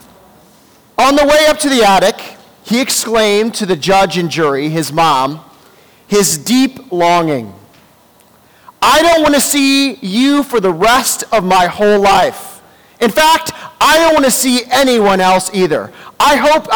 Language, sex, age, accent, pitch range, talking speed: English, male, 40-59, American, 160-215 Hz, 160 wpm